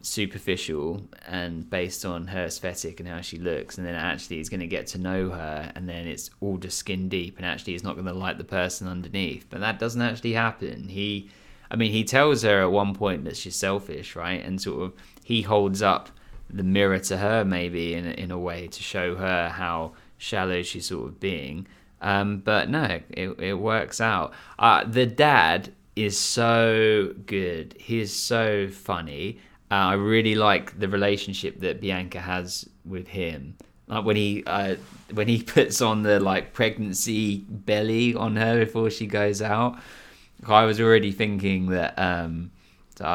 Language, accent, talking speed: English, British, 185 wpm